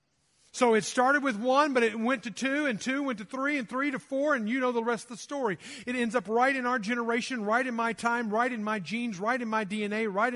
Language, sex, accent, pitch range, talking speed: English, male, American, 180-265 Hz, 270 wpm